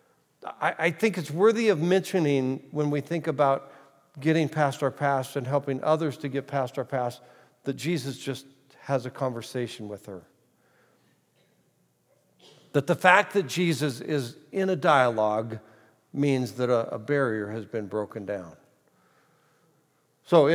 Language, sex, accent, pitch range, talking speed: English, male, American, 110-150 Hz, 140 wpm